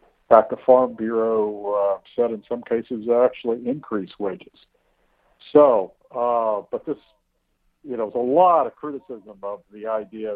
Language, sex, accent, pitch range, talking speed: English, male, American, 100-115 Hz, 160 wpm